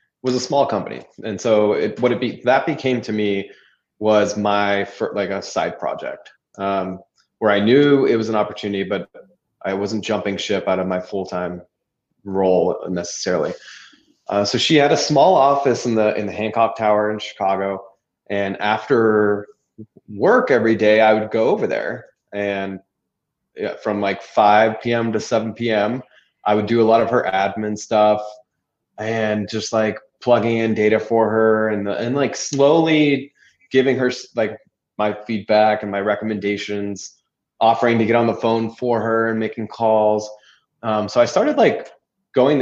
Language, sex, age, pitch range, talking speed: English, male, 20-39, 100-115 Hz, 165 wpm